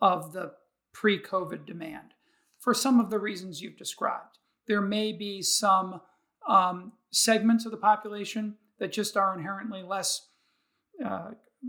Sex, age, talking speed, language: male, 40-59, 135 wpm, English